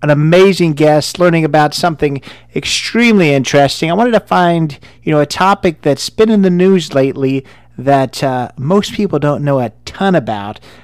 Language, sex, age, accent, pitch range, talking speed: English, male, 40-59, American, 125-160 Hz, 170 wpm